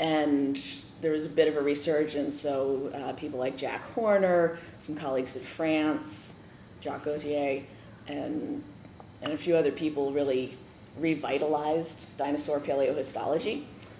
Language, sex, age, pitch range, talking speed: English, female, 30-49, 140-165 Hz, 130 wpm